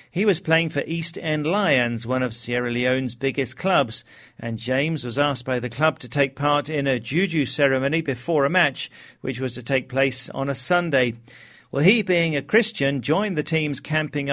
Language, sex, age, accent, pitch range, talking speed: English, male, 40-59, British, 130-165 Hz, 195 wpm